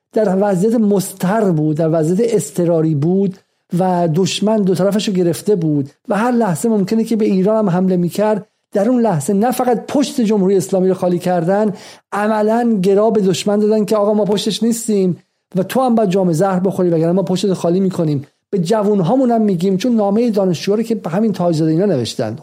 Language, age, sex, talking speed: Persian, 50-69, male, 190 wpm